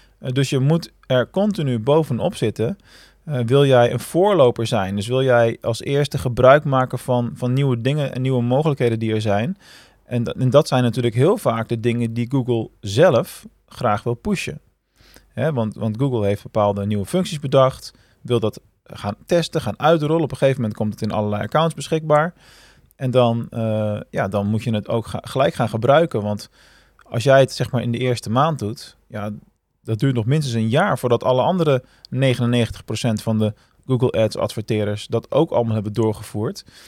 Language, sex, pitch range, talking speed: Dutch, male, 110-135 Hz, 180 wpm